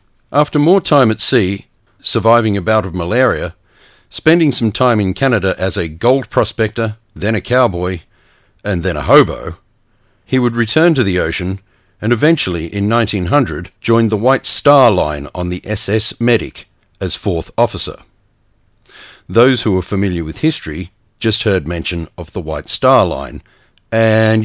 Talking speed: 155 wpm